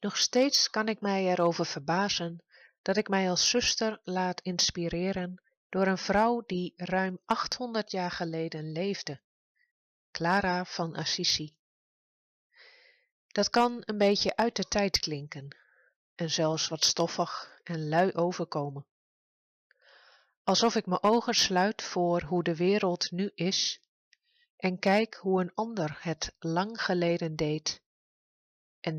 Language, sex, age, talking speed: Dutch, female, 30-49, 130 wpm